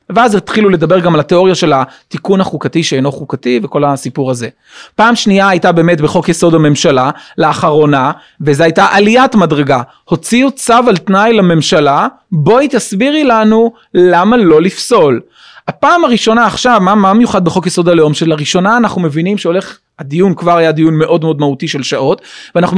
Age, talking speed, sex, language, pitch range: 30-49, 160 wpm, male, Hebrew, 175-240 Hz